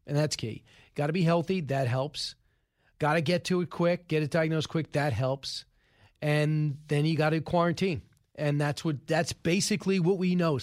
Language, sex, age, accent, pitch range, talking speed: English, male, 40-59, American, 140-175 Hz, 200 wpm